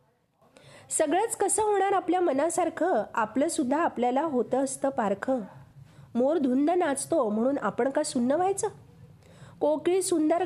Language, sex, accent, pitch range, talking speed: Marathi, female, native, 215-295 Hz, 125 wpm